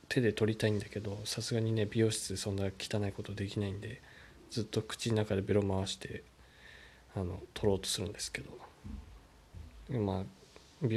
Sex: male